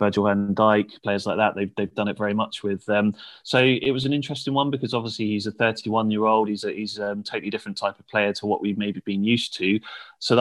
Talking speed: 230 wpm